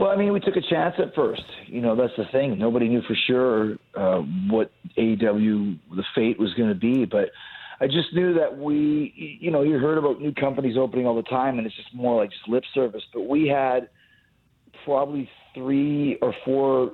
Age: 40-59